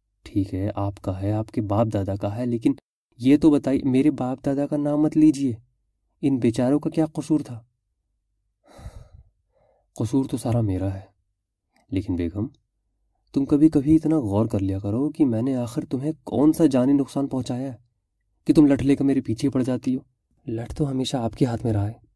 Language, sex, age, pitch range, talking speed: Urdu, male, 30-49, 100-135 Hz, 200 wpm